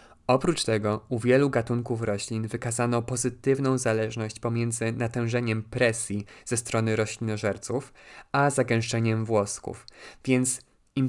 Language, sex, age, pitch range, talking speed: Polish, male, 20-39, 110-130 Hz, 110 wpm